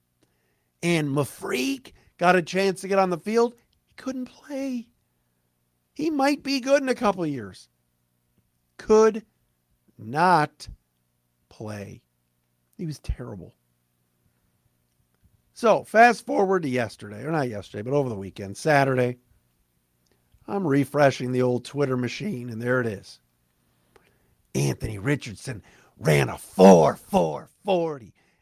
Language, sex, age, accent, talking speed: English, male, 50-69, American, 120 wpm